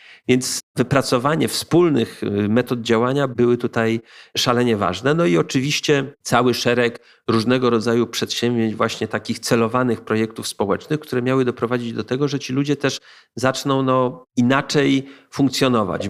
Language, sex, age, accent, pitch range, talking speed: Polish, male, 40-59, native, 115-135 Hz, 130 wpm